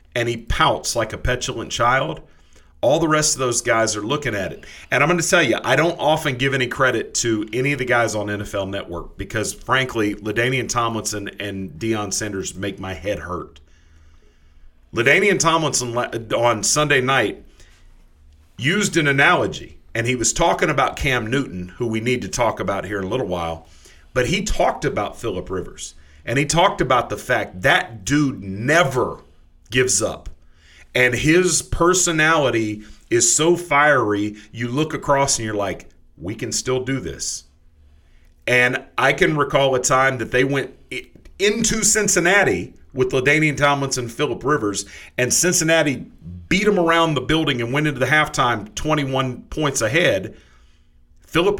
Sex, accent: male, American